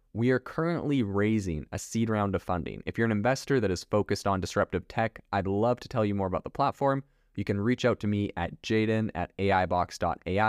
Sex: male